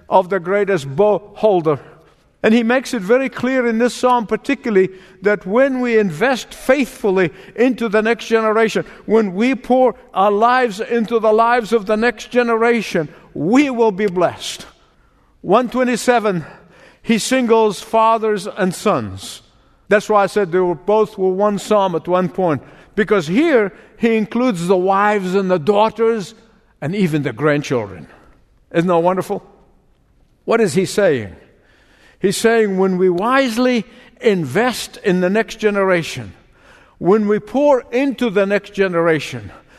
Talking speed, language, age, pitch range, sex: 145 wpm, English, 50-69, 185-235 Hz, male